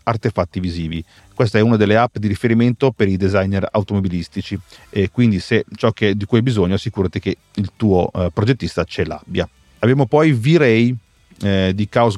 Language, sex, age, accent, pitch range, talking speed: Italian, male, 40-59, native, 95-120 Hz, 175 wpm